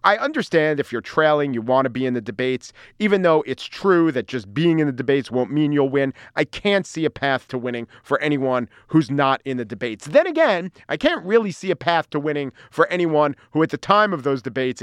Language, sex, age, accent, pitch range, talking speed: English, male, 40-59, American, 125-175 Hz, 240 wpm